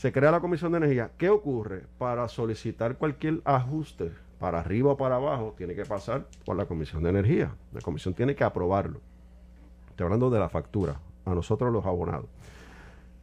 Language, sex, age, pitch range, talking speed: Spanish, male, 40-59, 85-135 Hz, 175 wpm